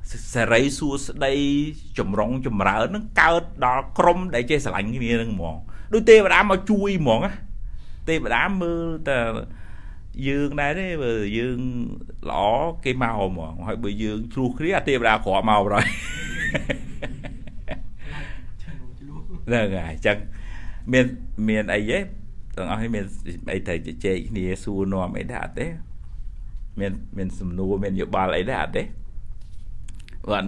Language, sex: English, male